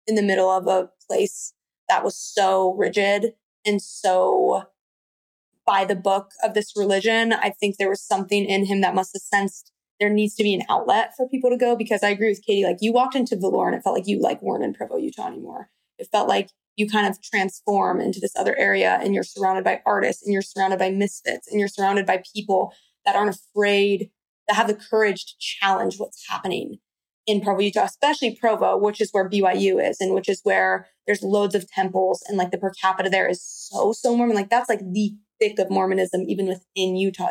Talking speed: 215 wpm